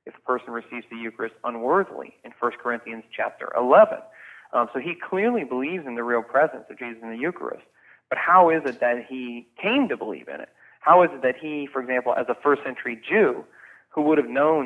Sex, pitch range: male, 120-145 Hz